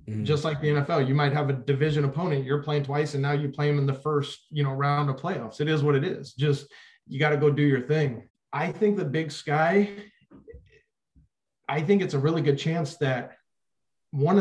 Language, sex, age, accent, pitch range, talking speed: English, male, 30-49, American, 130-150 Hz, 220 wpm